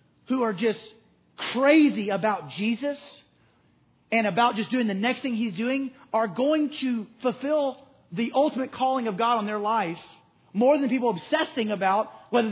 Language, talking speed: English, 160 wpm